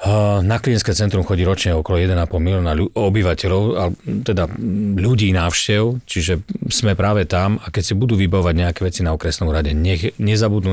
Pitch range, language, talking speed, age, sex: 85-105 Hz, Slovak, 155 wpm, 40-59, male